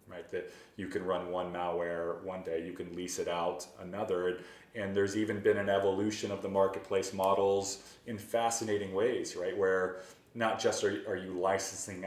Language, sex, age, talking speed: English, male, 30-49, 175 wpm